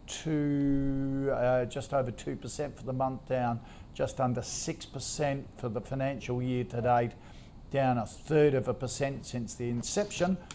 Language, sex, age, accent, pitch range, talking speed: English, male, 50-69, Australian, 125-150 Hz, 155 wpm